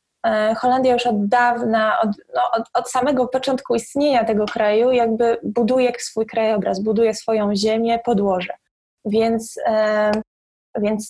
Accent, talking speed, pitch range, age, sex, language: native, 115 wpm, 225-260 Hz, 20-39, female, Polish